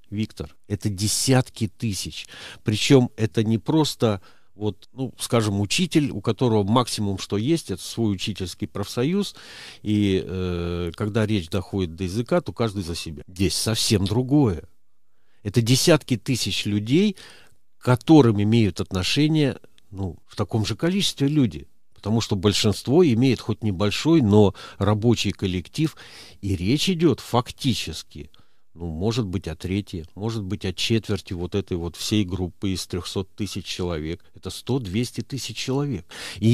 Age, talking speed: 50-69, 140 wpm